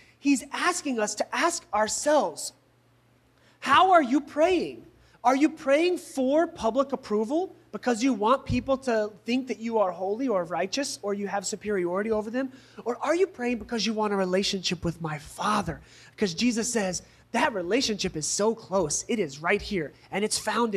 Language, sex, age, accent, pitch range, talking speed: English, male, 30-49, American, 175-245 Hz, 175 wpm